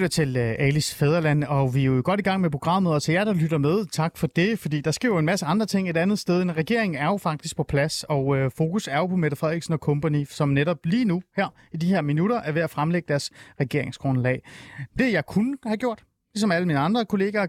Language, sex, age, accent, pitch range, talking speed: Danish, male, 30-49, native, 140-195 Hz, 250 wpm